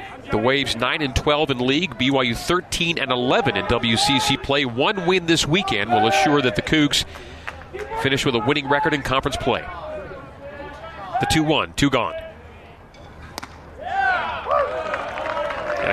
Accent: American